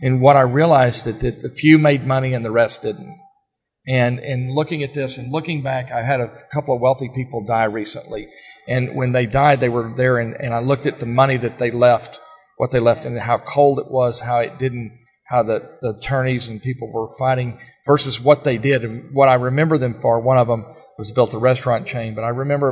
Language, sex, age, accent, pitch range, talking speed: English, male, 40-59, American, 120-140 Hz, 230 wpm